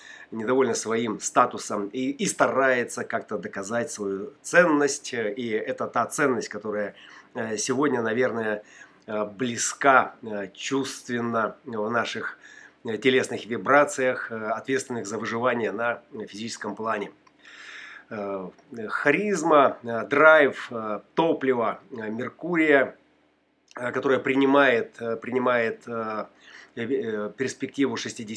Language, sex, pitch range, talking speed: Russian, male, 115-135 Hz, 80 wpm